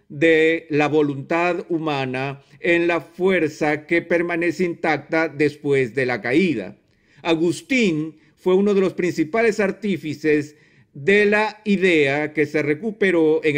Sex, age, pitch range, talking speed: male, 50-69, 145-185 Hz, 125 wpm